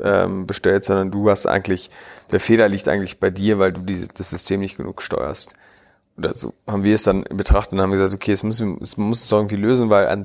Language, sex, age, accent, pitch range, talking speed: German, male, 30-49, German, 95-110 Hz, 230 wpm